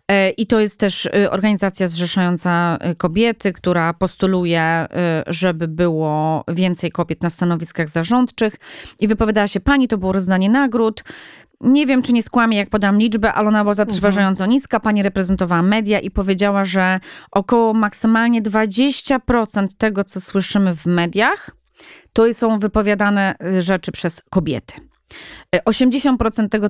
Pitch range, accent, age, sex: 180-220 Hz, native, 20-39, female